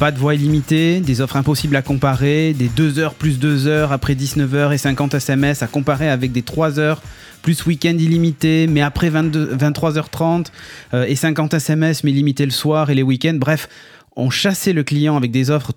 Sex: male